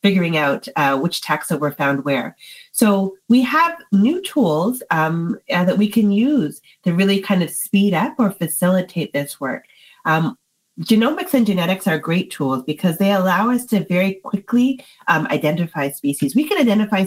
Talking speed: 170 wpm